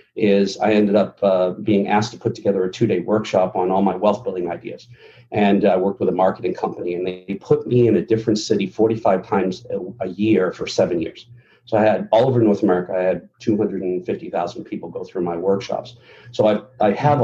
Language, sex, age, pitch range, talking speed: English, male, 50-69, 95-120 Hz, 210 wpm